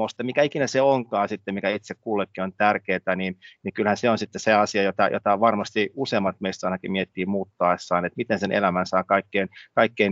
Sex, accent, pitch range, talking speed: male, native, 95-110 Hz, 200 wpm